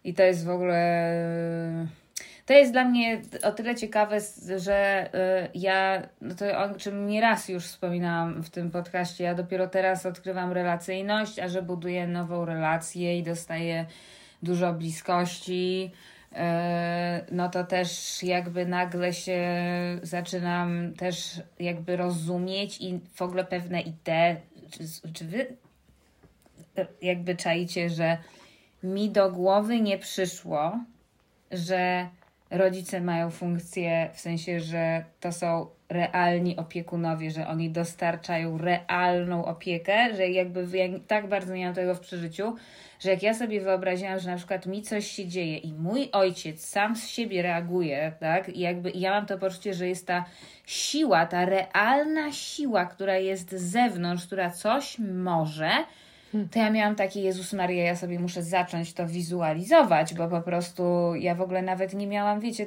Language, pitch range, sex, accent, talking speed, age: Polish, 175-195 Hz, female, native, 145 wpm, 20-39